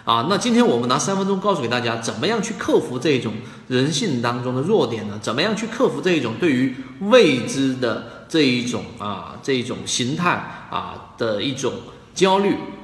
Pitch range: 115-155 Hz